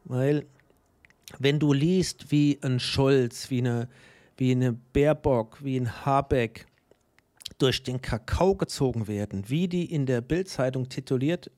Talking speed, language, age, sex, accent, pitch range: 135 wpm, German, 50-69, male, German, 125-160 Hz